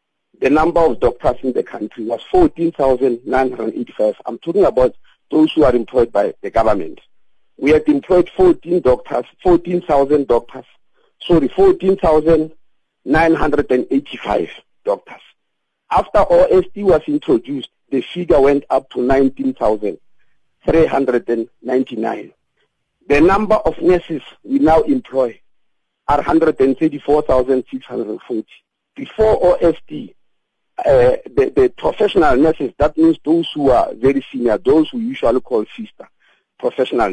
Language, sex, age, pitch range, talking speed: English, male, 50-69, 135-215 Hz, 135 wpm